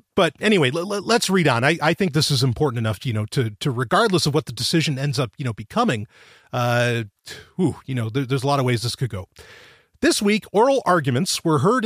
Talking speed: 225 wpm